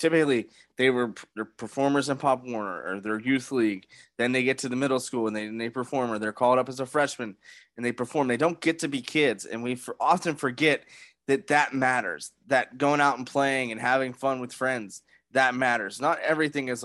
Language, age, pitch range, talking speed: English, 20-39, 115-140 Hz, 215 wpm